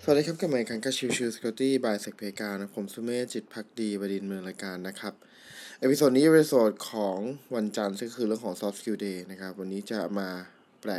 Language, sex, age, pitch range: Thai, male, 20-39, 105-130 Hz